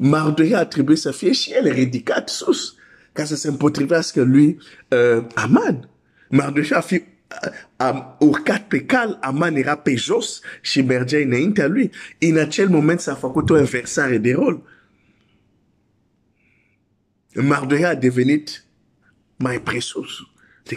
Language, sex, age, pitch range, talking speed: Romanian, male, 50-69, 125-170 Hz, 100 wpm